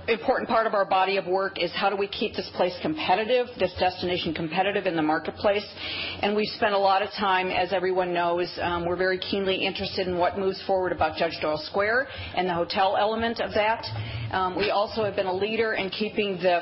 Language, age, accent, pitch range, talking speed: English, 40-59, American, 175-215 Hz, 215 wpm